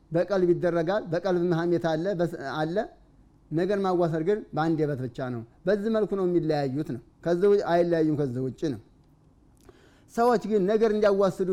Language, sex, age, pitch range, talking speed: Amharic, male, 30-49, 155-195 Hz, 140 wpm